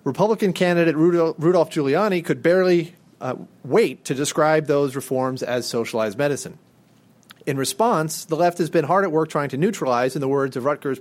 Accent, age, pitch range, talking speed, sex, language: American, 30-49, 135-170 Hz, 175 wpm, male, English